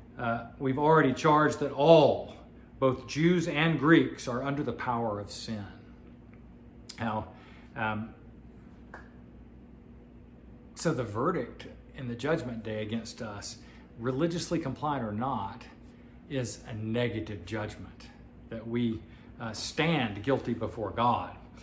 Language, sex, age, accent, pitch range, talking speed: English, male, 40-59, American, 110-135 Hz, 115 wpm